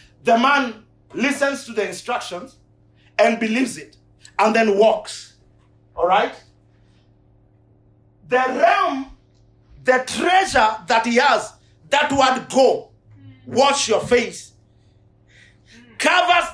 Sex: male